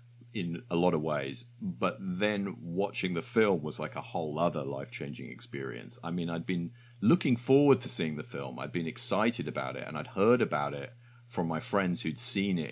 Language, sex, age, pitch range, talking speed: English, male, 40-59, 80-110 Hz, 205 wpm